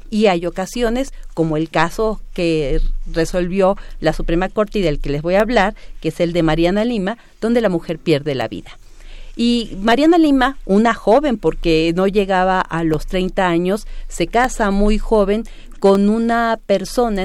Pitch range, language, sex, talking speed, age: 175-230 Hz, Spanish, female, 170 wpm, 40-59